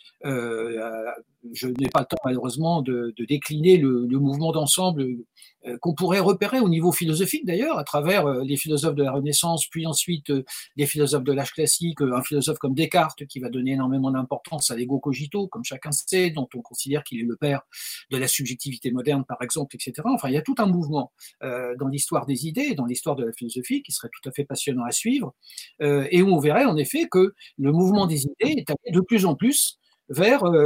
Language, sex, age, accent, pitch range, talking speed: French, male, 60-79, French, 140-185 Hz, 215 wpm